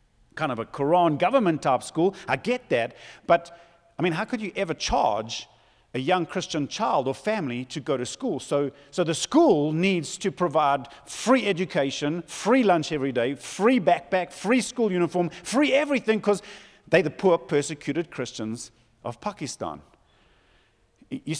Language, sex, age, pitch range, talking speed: English, male, 50-69, 150-210 Hz, 160 wpm